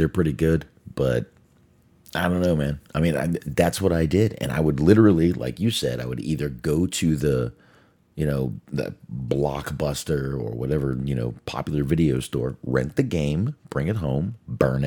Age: 40-59